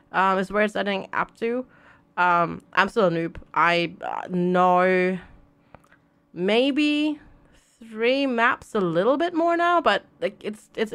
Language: English